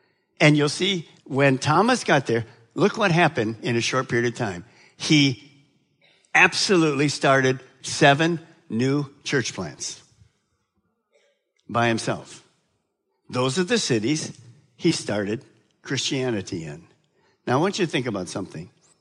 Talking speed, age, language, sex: 130 wpm, 60-79, English, male